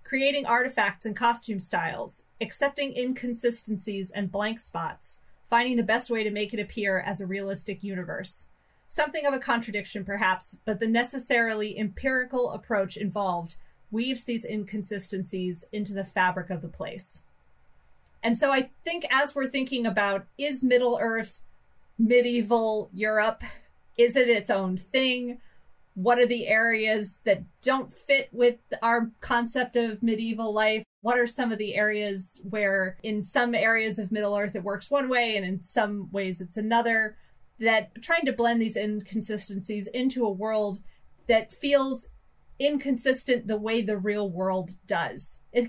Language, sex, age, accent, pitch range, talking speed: English, female, 30-49, American, 200-240 Hz, 150 wpm